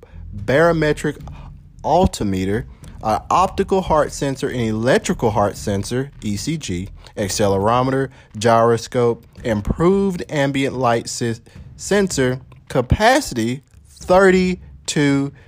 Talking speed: 75 wpm